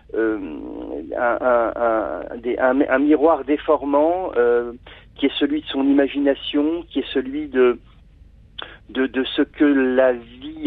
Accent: French